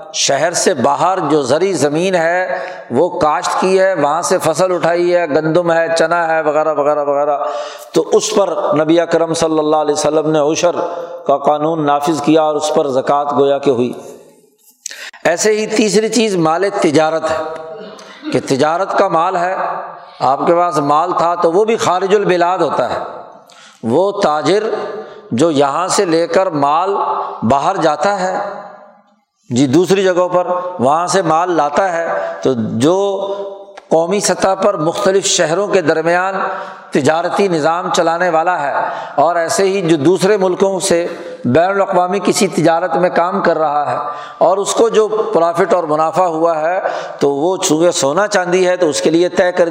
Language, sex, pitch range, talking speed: Urdu, male, 155-195 Hz, 170 wpm